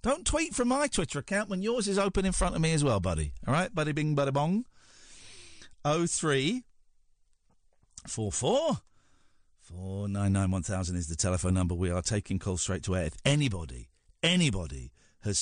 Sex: male